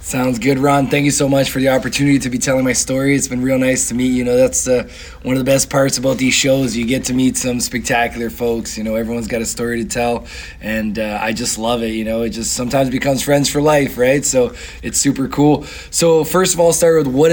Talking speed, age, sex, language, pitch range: 265 wpm, 20-39, male, English, 120-145 Hz